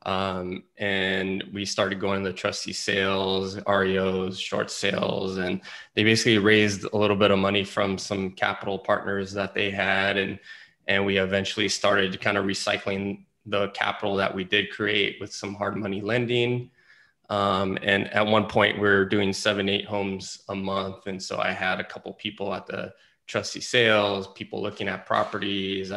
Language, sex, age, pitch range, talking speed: English, male, 20-39, 100-105 Hz, 170 wpm